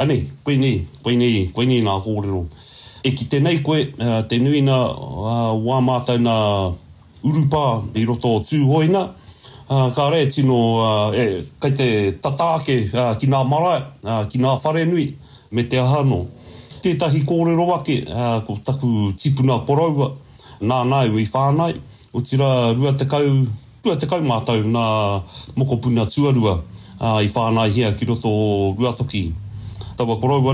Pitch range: 110-140 Hz